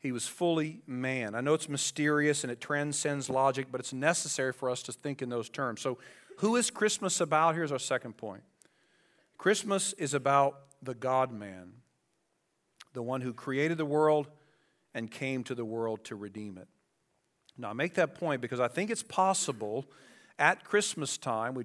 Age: 40-59